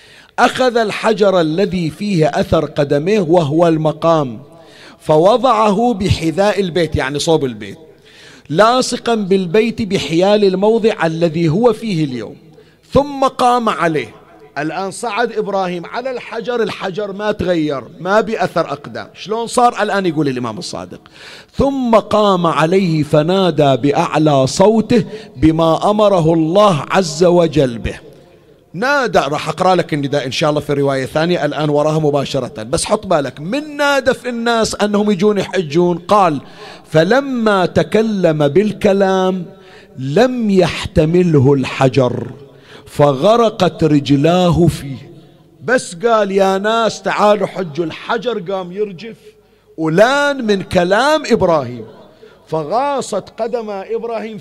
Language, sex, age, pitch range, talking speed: Arabic, male, 50-69, 155-215 Hz, 115 wpm